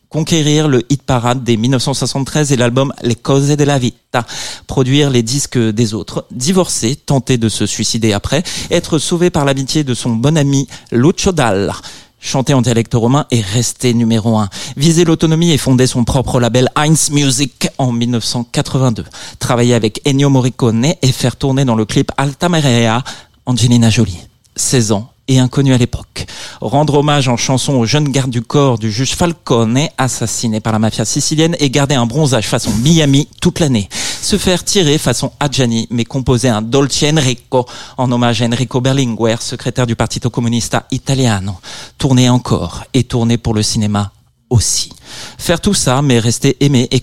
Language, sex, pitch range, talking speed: French, male, 115-140 Hz, 170 wpm